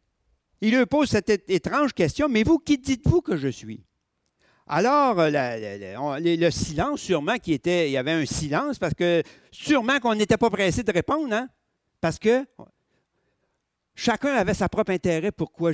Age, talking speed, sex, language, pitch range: 60-79, 160 wpm, male, French, 150-255 Hz